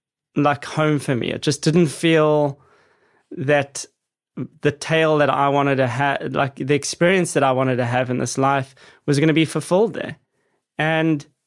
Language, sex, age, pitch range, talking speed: English, male, 20-39, 135-155 Hz, 180 wpm